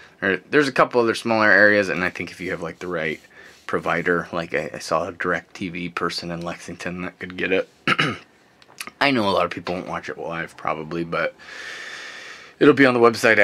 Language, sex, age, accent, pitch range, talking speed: English, male, 20-39, American, 85-100 Hz, 210 wpm